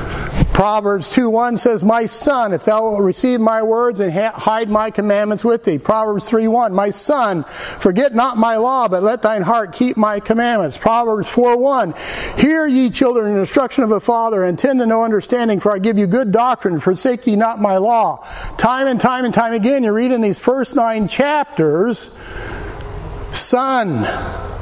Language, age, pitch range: English, 50-69, 180-245 Hz